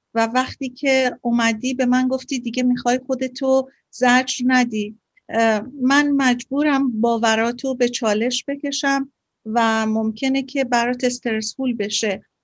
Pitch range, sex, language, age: 230-275 Hz, female, Persian, 50-69